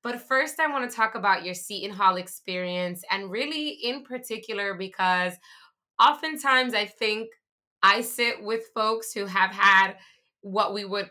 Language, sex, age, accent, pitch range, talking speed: English, female, 20-39, American, 180-215 Hz, 160 wpm